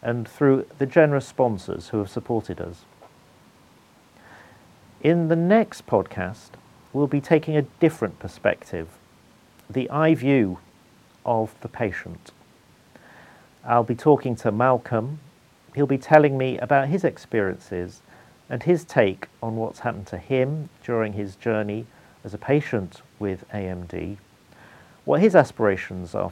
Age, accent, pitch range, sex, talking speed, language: 50-69, British, 105-140 Hz, male, 130 wpm, English